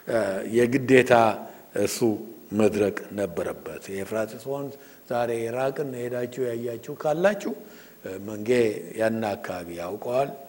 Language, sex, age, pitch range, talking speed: English, male, 60-79, 120-185 Hz, 115 wpm